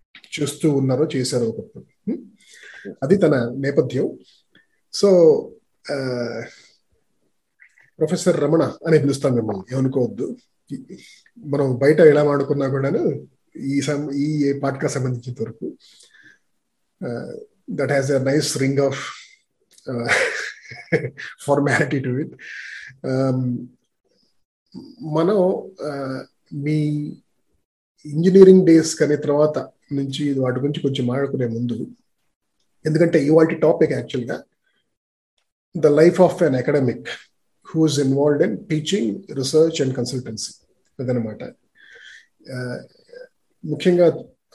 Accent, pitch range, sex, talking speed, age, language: native, 130-155 Hz, male, 85 wpm, 30-49, Telugu